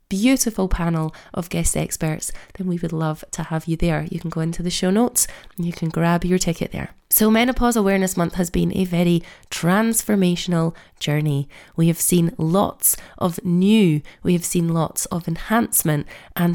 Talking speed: 180 wpm